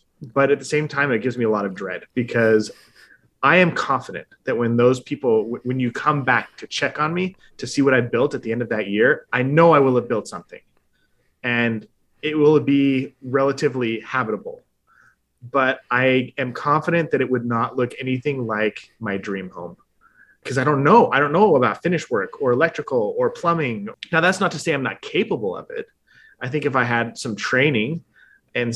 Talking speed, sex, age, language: 205 wpm, male, 20-39, English